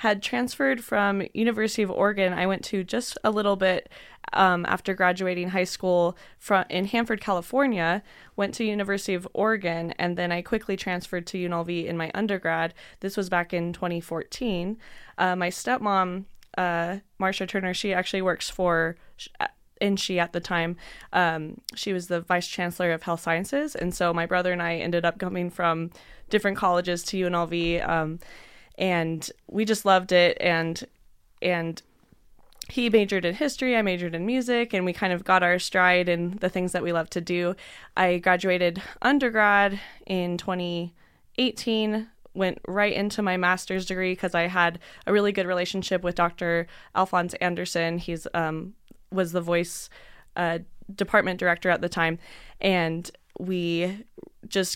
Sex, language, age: female, English, 20-39